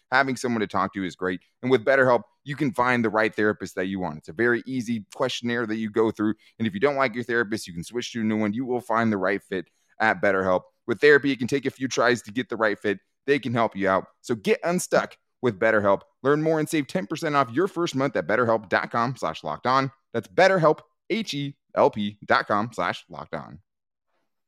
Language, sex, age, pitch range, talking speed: English, male, 20-39, 100-140 Hz, 215 wpm